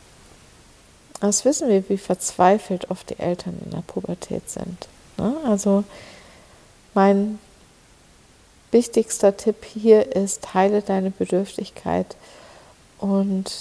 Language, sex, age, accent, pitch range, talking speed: German, female, 60-79, German, 185-205 Hz, 95 wpm